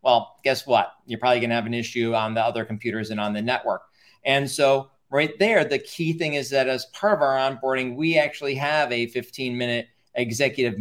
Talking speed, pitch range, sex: 215 wpm, 120-145 Hz, male